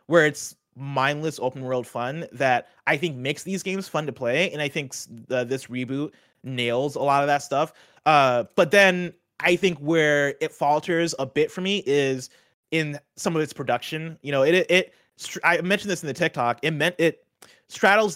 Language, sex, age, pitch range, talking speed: English, male, 20-39, 130-165 Hz, 200 wpm